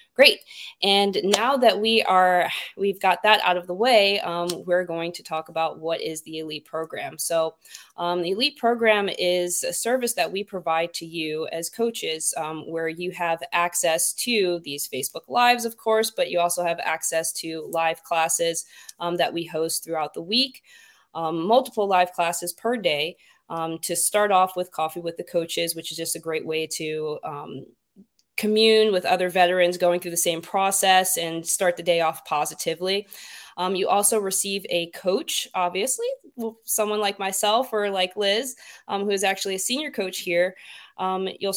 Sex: female